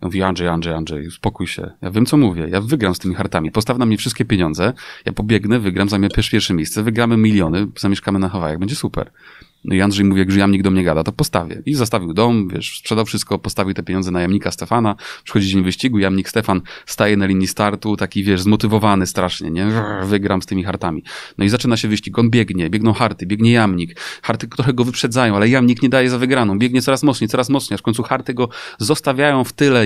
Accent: native